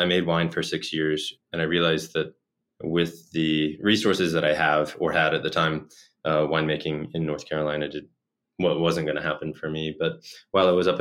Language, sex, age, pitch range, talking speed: English, male, 20-39, 75-85 Hz, 215 wpm